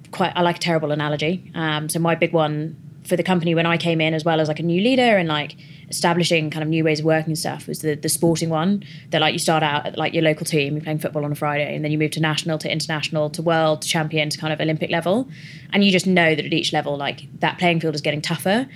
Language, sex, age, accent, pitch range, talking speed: English, female, 20-39, British, 155-175 Hz, 285 wpm